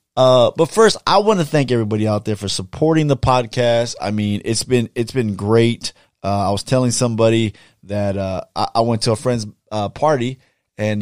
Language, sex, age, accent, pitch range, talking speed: English, male, 20-39, American, 105-140 Hz, 200 wpm